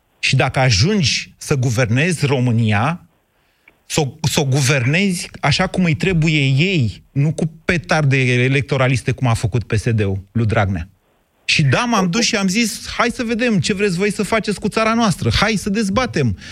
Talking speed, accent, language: 170 wpm, native, Romanian